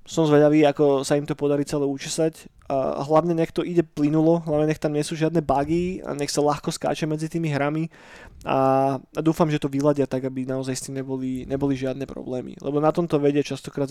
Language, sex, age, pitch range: Slovak, male, 20-39, 140-160 Hz